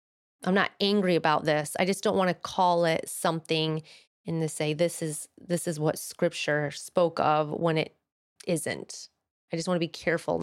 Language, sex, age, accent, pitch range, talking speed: English, female, 30-49, American, 160-205 Hz, 190 wpm